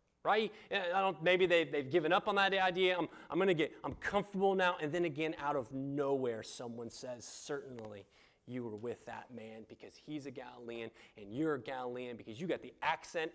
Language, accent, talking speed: English, American, 200 wpm